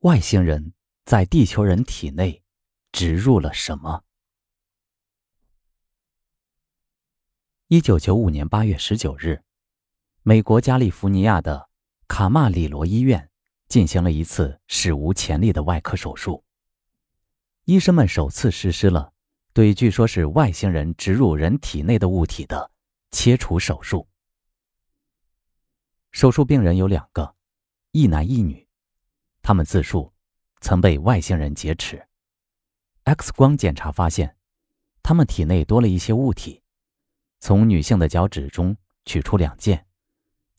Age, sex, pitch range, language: 20-39, male, 85-110 Hz, Chinese